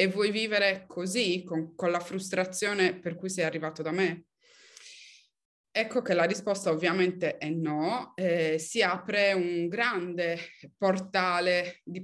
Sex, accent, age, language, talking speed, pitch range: female, native, 20-39, Italian, 140 wpm, 165-210 Hz